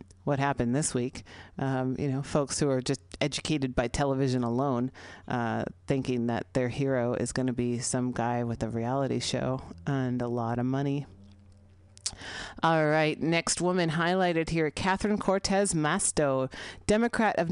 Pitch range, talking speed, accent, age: 130-180 Hz, 160 wpm, American, 40-59